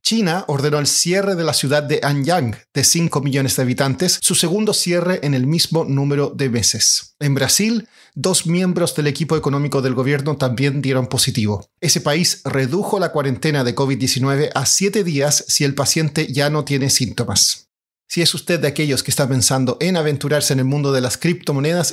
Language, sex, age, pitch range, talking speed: Spanish, male, 40-59, 135-170 Hz, 185 wpm